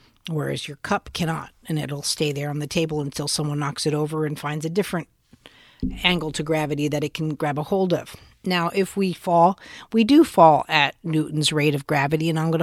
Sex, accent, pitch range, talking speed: female, American, 150-185 Hz, 215 wpm